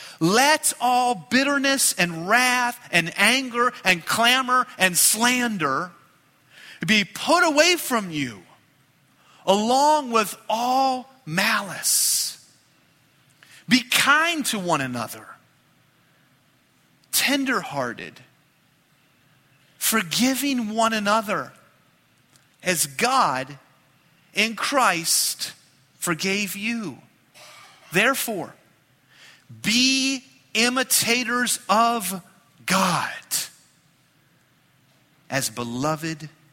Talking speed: 70 wpm